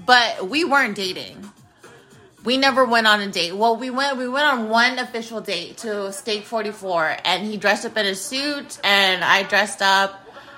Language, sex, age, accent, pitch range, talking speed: English, female, 30-49, American, 210-270 Hz, 185 wpm